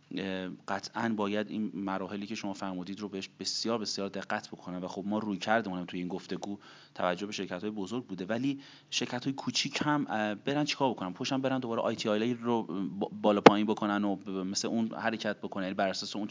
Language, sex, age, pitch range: Persian, male, 30-49, 100-130 Hz